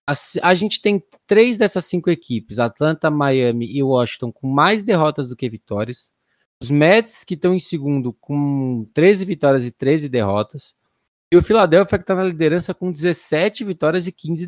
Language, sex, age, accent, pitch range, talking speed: Portuguese, male, 20-39, Brazilian, 130-175 Hz, 175 wpm